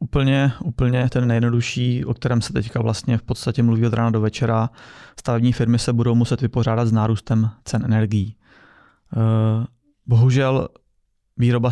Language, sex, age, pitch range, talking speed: Czech, male, 20-39, 110-125 Hz, 145 wpm